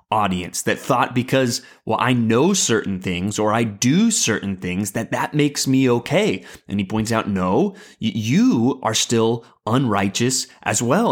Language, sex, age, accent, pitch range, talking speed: English, male, 30-49, American, 110-150 Hz, 160 wpm